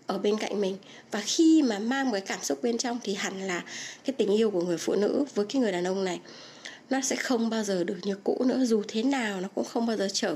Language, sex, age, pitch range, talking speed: Vietnamese, female, 20-39, 200-265 Hz, 270 wpm